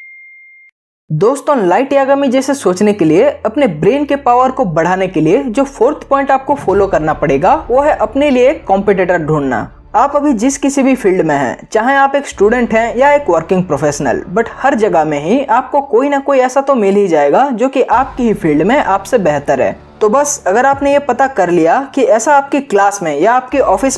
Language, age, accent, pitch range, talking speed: Hindi, 20-39, native, 195-280 Hz, 210 wpm